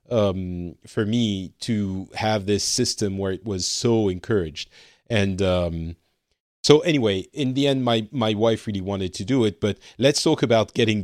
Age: 40-59